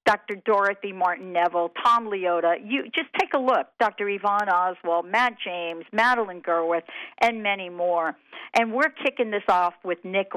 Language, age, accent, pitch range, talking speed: English, 50-69, American, 175-230 Hz, 160 wpm